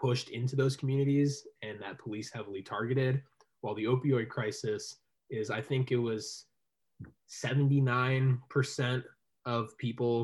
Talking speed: 125 wpm